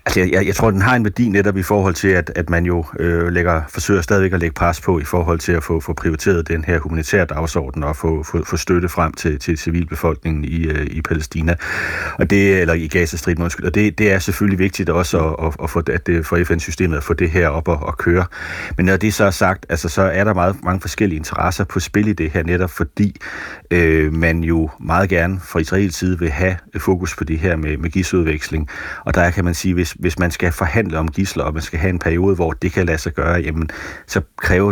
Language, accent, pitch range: Danish, native, 80-95 Hz